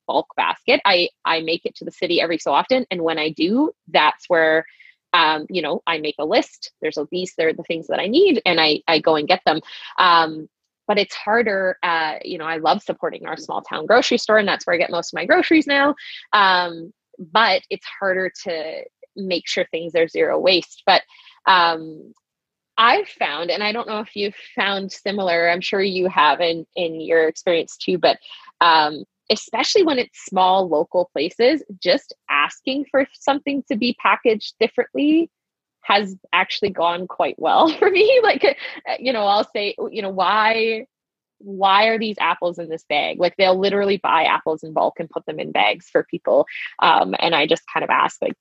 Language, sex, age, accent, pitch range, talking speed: English, female, 20-39, American, 170-255 Hz, 195 wpm